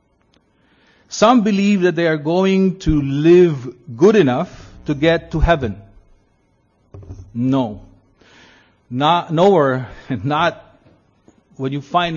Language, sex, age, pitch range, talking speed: English, male, 50-69, 110-165 Hz, 105 wpm